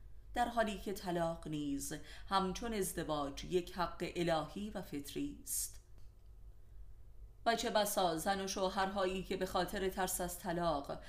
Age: 30-49